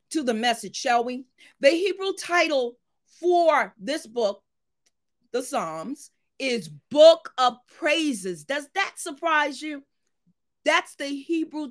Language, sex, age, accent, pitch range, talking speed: English, female, 40-59, American, 225-300 Hz, 125 wpm